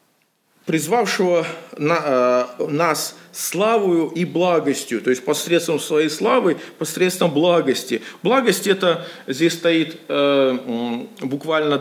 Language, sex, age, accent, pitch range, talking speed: Russian, male, 40-59, native, 145-195 Hz, 95 wpm